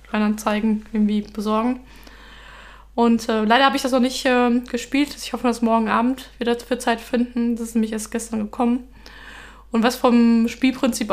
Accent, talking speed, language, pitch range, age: German, 175 wpm, German, 220-255 Hz, 20-39